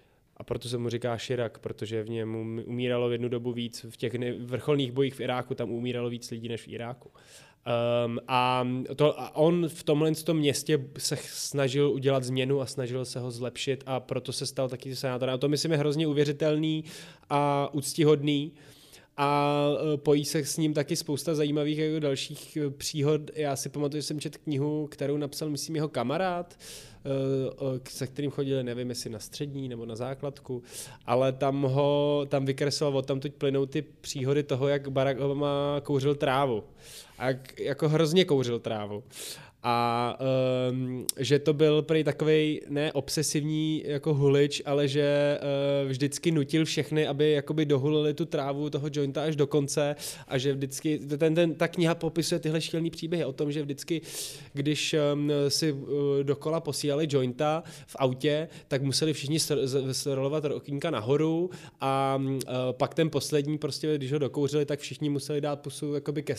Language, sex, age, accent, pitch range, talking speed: Czech, male, 20-39, native, 130-150 Hz, 170 wpm